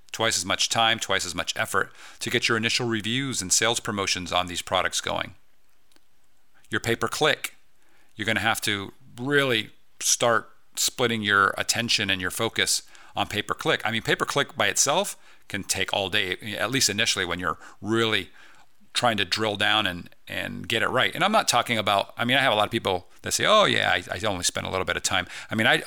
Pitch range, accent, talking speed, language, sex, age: 95-120 Hz, American, 205 wpm, English, male, 40-59